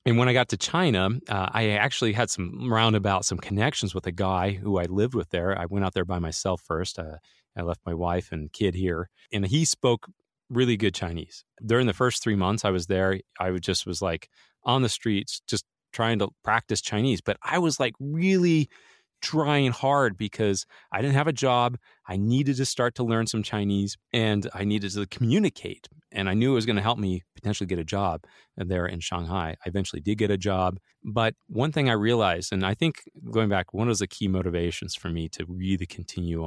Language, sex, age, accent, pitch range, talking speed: English, male, 30-49, American, 90-115 Hz, 215 wpm